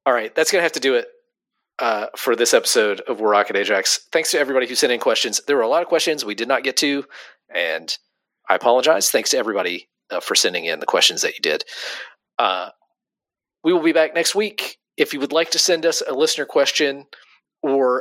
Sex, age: male, 40-59